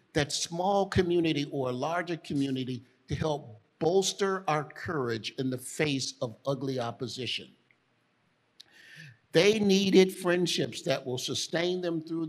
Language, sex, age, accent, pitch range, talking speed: English, male, 50-69, American, 135-170 Hz, 125 wpm